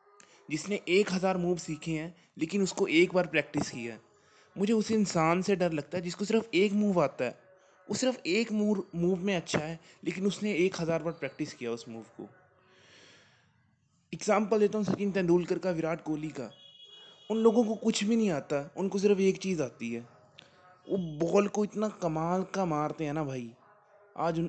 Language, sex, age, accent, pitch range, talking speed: Hindi, male, 20-39, native, 145-195 Hz, 185 wpm